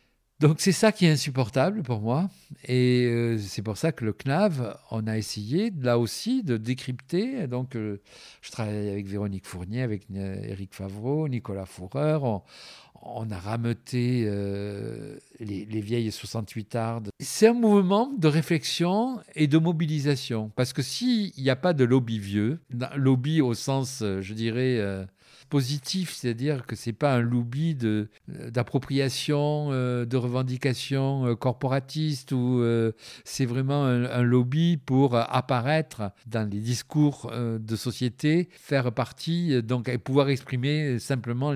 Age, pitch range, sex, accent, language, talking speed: 50-69, 115-150 Hz, male, French, French, 145 wpm